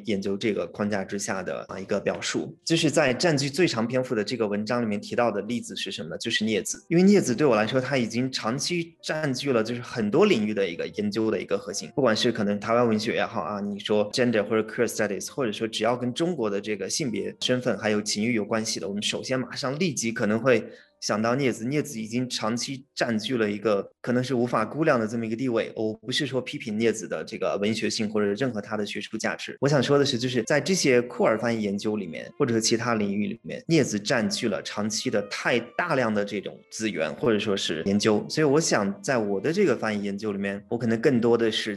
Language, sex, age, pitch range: Chinese, male, 20-39, 105-125 Hz